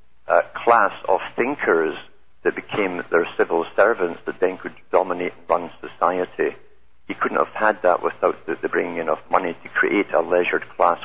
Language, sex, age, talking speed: English, male, 60-79, 175 wpm